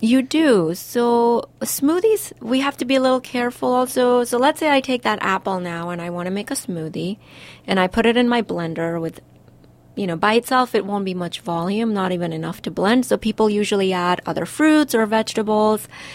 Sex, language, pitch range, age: female, English, 190-245 Hz, 30-49